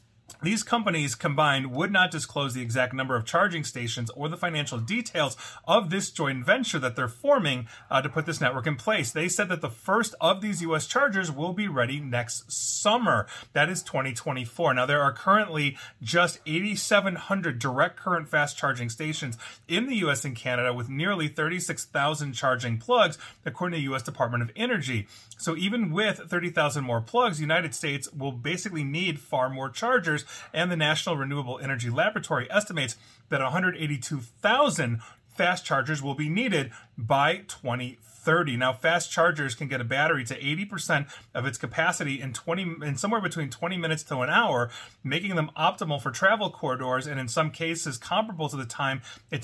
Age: 30-49